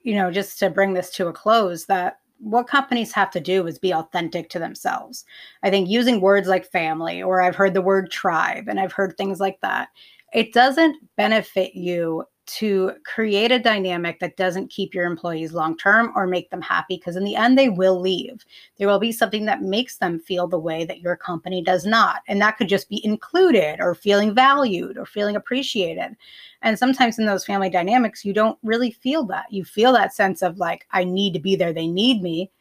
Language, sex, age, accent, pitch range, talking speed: English, female, 30-49, American, 185-230 Hz, 210 wpm